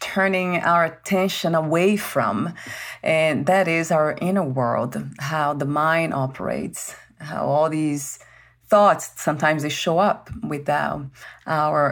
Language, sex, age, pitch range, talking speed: English, female, 30-49, 150-185 Hz, 125 wpm